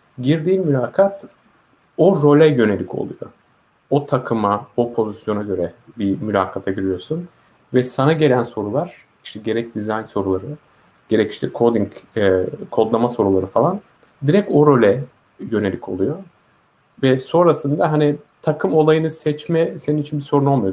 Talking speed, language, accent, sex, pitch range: 125 wpm, Turkish, native, male, 110-155 Hz